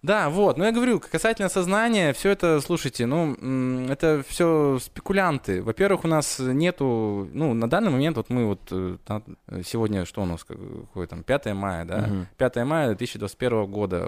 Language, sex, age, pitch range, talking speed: Russian, male, 20-39, 100-130 Hz, 160 wpm